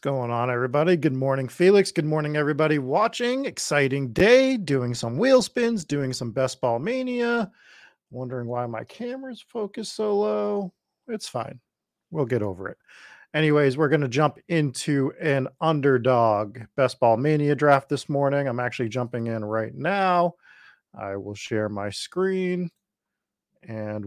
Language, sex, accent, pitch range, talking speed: English, male, American, 115-160 Hz, 145 wpm